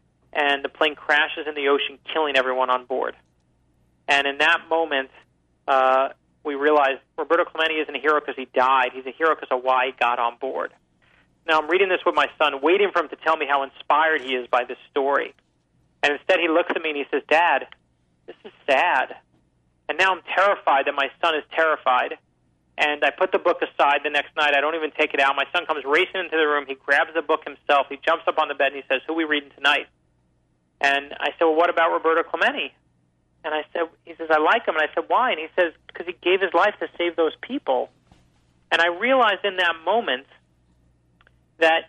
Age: 40-59